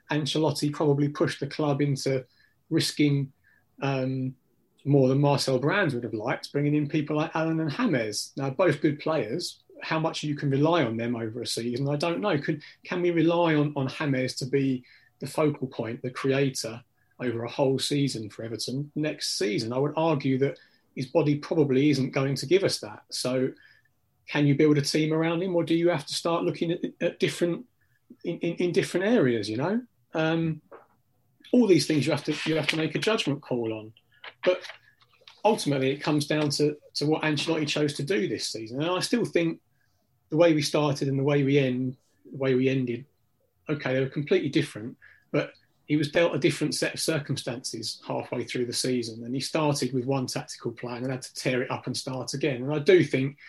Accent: British